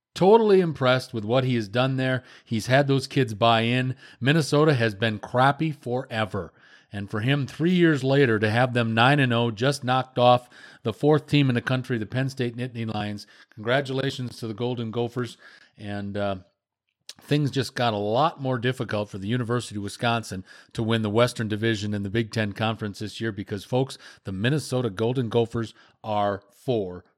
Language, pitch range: English, 100-130 Hz